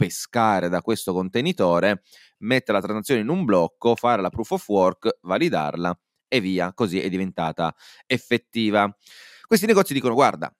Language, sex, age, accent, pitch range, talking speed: Italian, male, 30-49, native, 95-130 Hz, 145 wpm